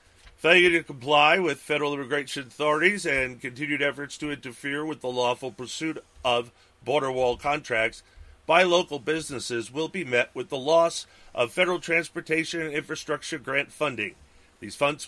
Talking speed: 150 wpm